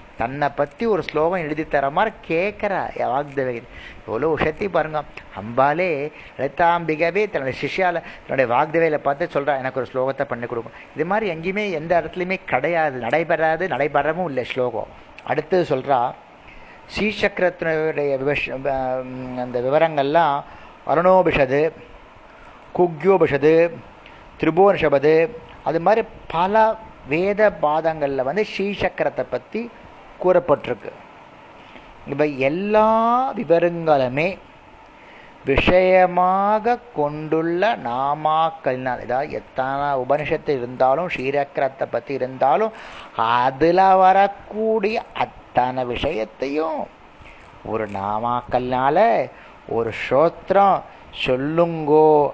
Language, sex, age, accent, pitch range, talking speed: Tamil, male, 30-49, native, 130-180 Hz, 80 wpm